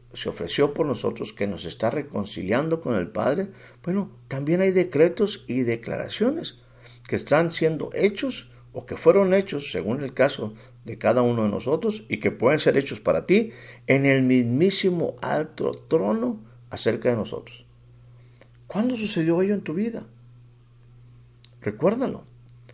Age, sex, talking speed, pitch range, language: 50-69, male, 145 wpm, 120-160 Hz, Spanish